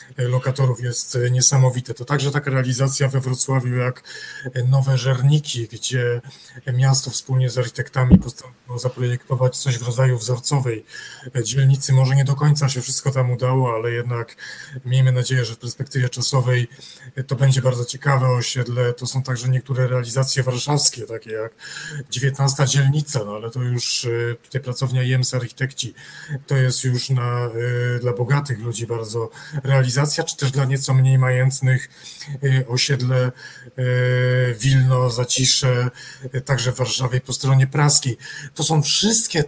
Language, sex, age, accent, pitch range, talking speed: Polish, male, 40-59, native, 125-135 Hz, 135 wpm